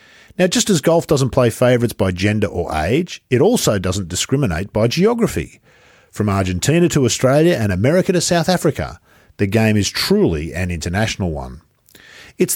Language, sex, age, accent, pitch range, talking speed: English, male, 50-69, Australian, 95-145 Hz, 160 wpm